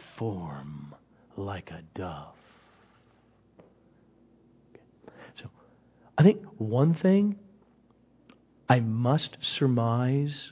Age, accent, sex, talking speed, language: 40-59, American, male, 70 wpm, English